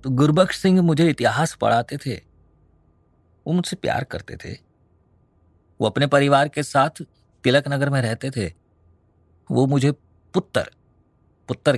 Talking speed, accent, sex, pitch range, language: 125 wpm, native, male, 85-125 Hz, Hindi